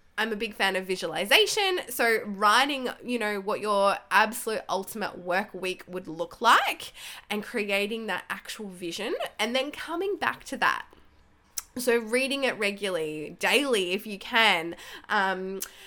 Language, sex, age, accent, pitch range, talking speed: English, female, 10-29, Australian, 190-260 Hz, 150 wpm